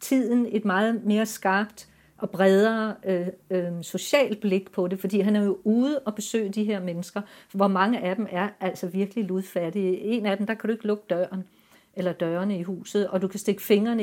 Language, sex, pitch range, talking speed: Danish, female, 185-220 Hz, 210 wpm